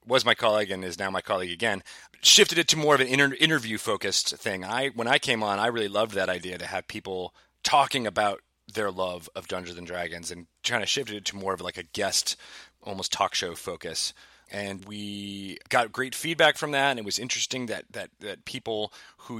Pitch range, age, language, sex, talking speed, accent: 95-120 Hz, 30-49, English, male, 225 wpm, American